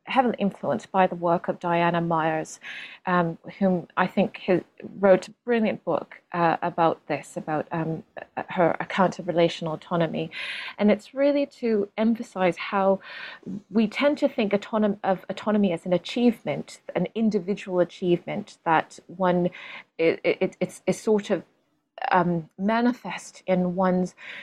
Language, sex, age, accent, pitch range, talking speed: English, female, 30-49, British, 170-205 Hz, 135 wpm